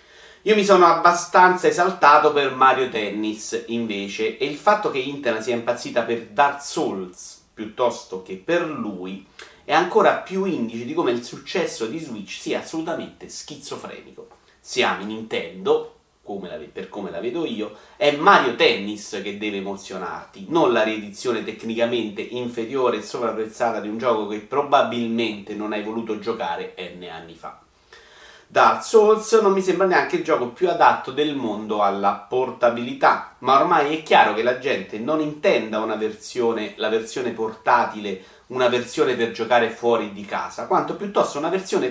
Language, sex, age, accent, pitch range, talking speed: Italian, male, 30-49, native, 110-180 Hz, 155 wpm